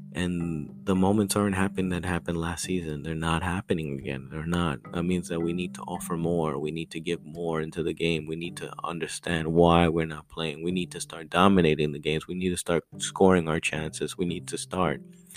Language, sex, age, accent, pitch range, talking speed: English, male, 30-49, American, 75-90 Hz, 225 wpm